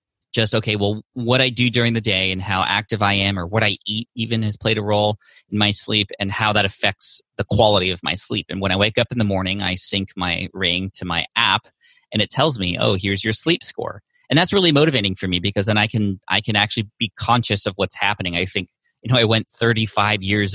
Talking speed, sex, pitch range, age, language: 250 wpm, male, 95-110 Hz, 30-49, English